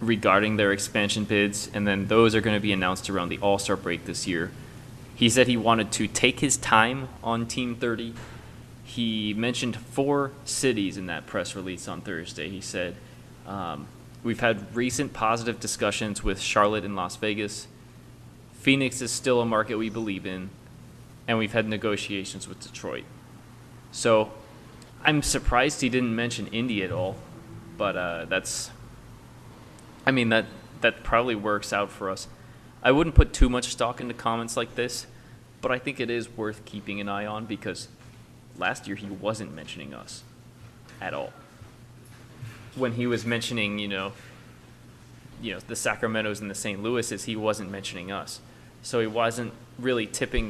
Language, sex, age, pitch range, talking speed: English, male, 20-39, 105-120 Hz, 165 wpm